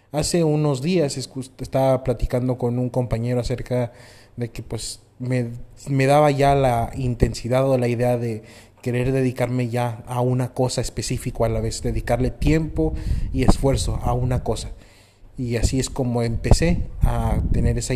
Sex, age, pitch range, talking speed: male, 30-49, 115-130 Hz, 155 wpm